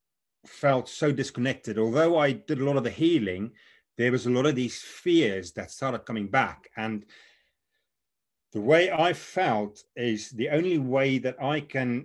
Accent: British